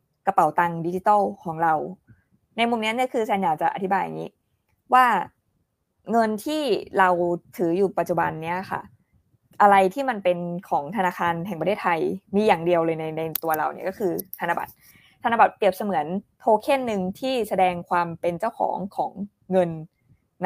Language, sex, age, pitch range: Thai, female, 20-39, 180-225 Hz